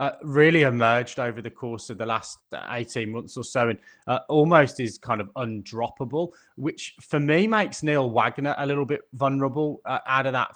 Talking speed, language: 195 wpm, English